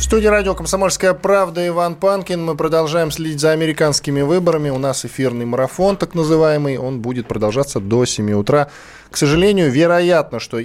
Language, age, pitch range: Russian, 10-29, 105-140 Hz